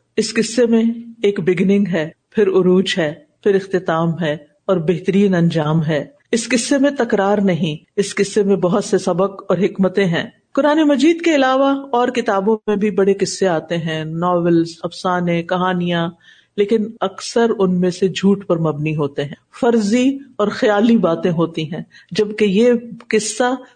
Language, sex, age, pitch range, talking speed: Urdu, female, 50-69, 185-250 Hz, 160 wpm